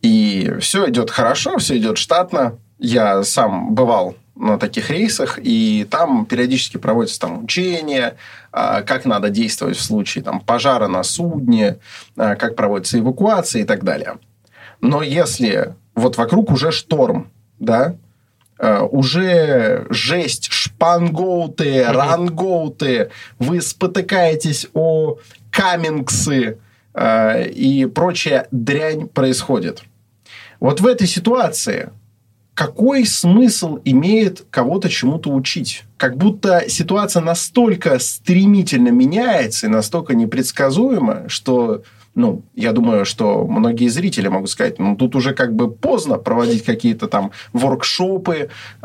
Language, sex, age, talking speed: Russian, male, 20-39, 110 wpm